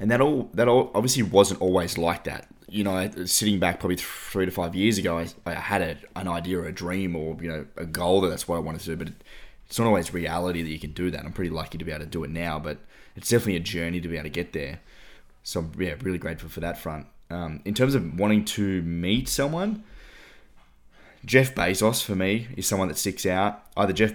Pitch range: 80-95 Hz